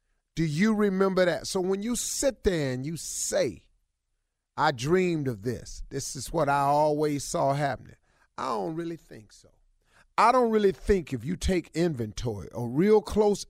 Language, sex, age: English, male, 40-59